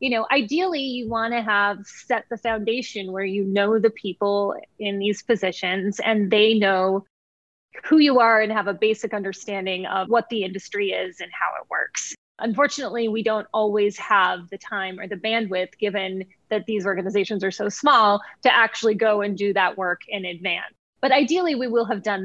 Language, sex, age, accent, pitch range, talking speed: English, female, 20-39, American, 195-230 Hz, 190 wpm